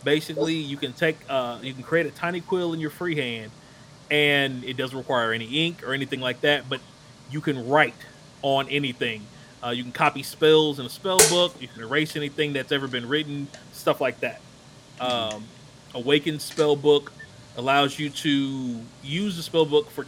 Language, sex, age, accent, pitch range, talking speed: English, male, 30-49, American, 125-150 Hz, 190 wpm